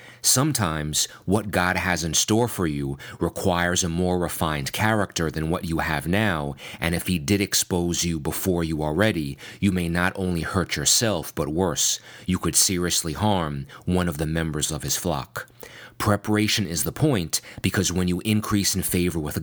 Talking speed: 180 wpm